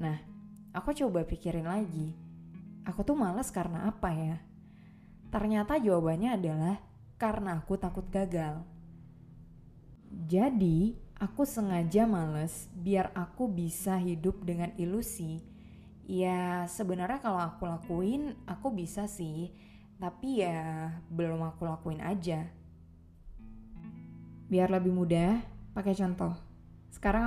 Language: Indonesian